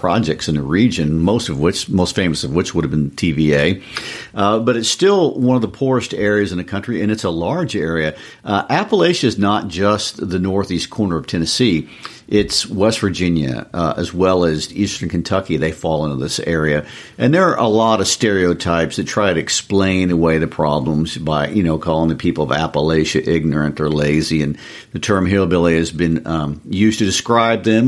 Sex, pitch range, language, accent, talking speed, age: male, 80-100 Hz, English, American, 200 wpm, 50-69